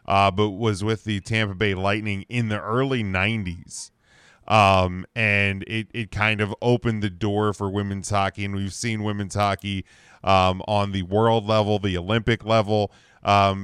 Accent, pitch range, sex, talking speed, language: American, 95-120 Hz, male, 165 wpm, English